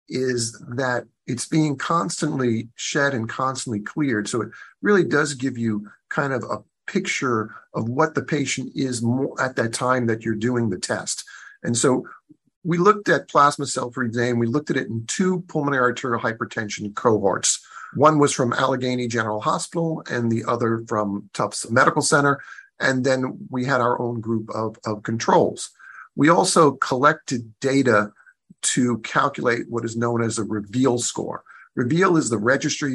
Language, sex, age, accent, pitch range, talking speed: English, male, 50-69, American, 115-140 Hz, 170 wpm